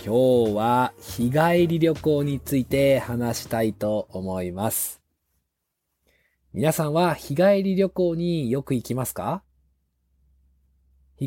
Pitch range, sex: 110-165 Hz, male